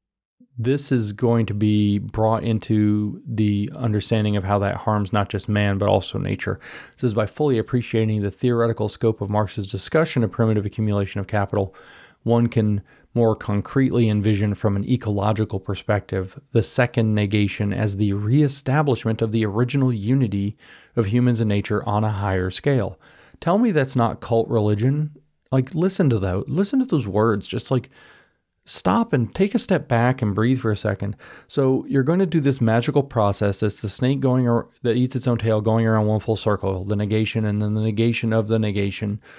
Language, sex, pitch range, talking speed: English, male, 105-130 Hz, 185 wpm